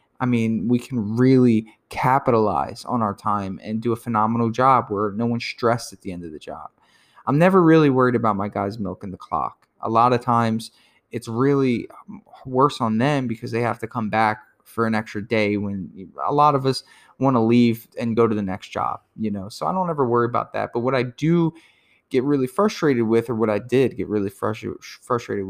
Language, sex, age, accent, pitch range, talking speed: English, male, 20-39, American, 110-130 Hz, 215 wpm